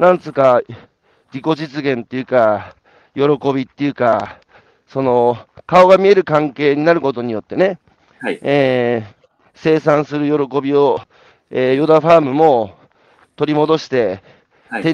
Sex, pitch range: male, 135-165 Hz